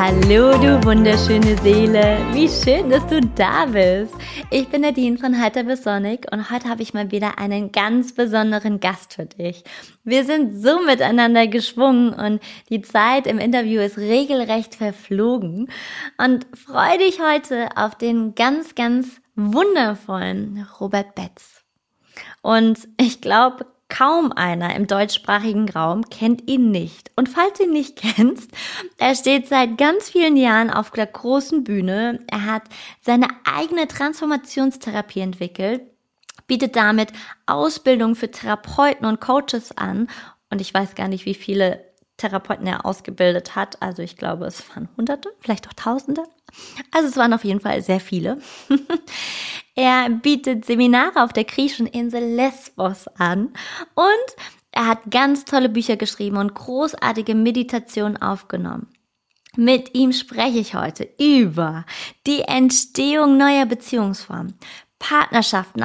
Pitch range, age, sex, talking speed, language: 210-265 Hz, 20-39, female, 140 wpm, German